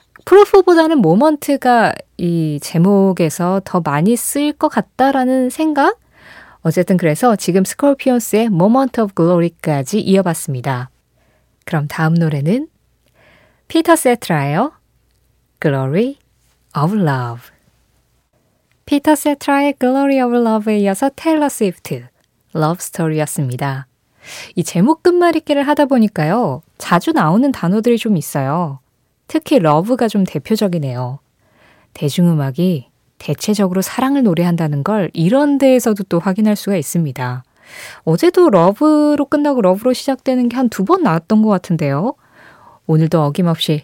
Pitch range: 155-260 Hz